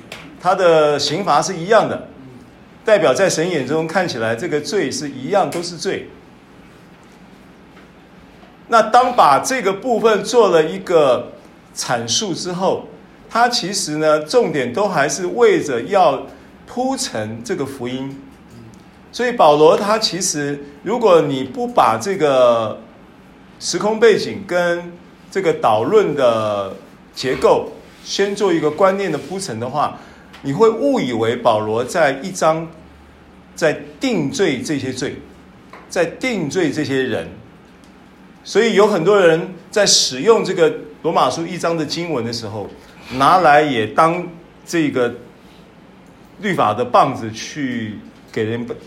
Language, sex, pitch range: Chinese, male, 145-210 Hz